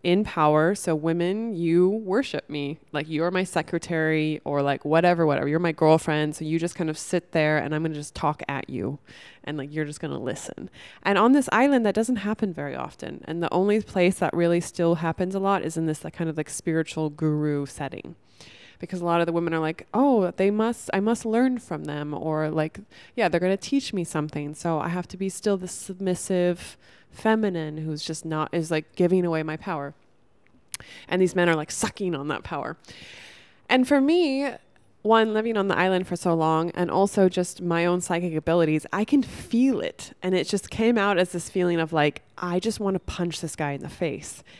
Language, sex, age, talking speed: English, female, 20-39, 215 wpm